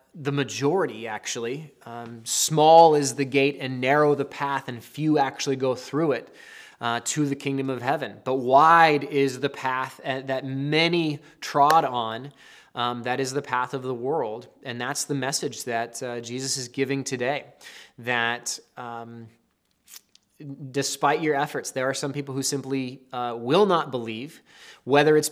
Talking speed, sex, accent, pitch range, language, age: 160 wpm, male, American, 130-150 Hz, English, 20-39